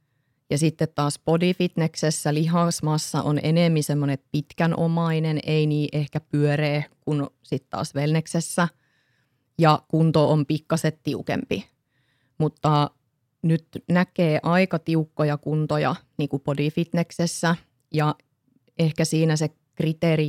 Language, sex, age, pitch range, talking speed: Finnish, female, 30-49, 145-160 Hz, 105 wpm